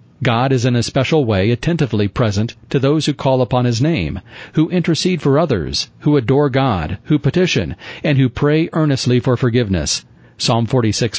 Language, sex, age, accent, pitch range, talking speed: English, male, 40-59, American, 115-145 Hz, 170 wpm